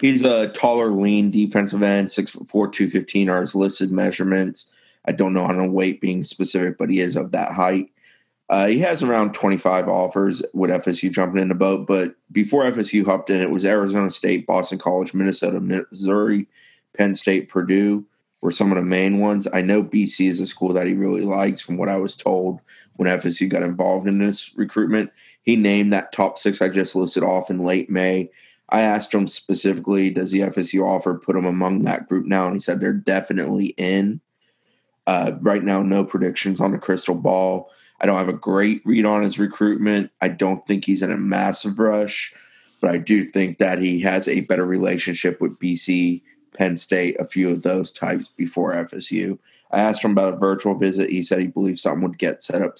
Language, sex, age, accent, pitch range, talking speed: English, male, 20-39, American, 95-100 Hz, 205 wpm